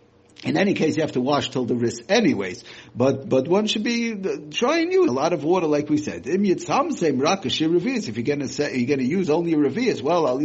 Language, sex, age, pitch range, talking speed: English, male, 50-69, 130-180 Hz, 200 wpm